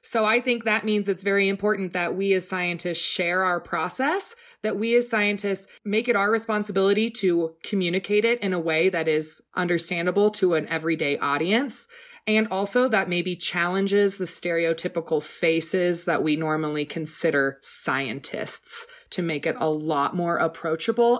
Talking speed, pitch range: 160 wpm, 160-220 Hz